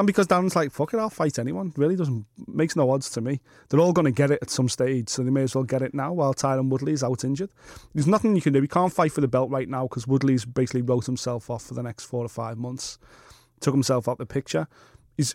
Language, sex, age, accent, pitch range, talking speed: English, male, 30-49, British, 130-175 Hz, 275 wpm